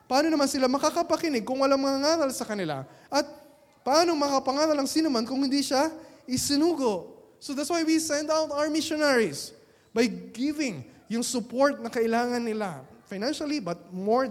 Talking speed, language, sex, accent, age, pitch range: 155 wpm, Filipino, male, native, 20-39, 170-255 Hz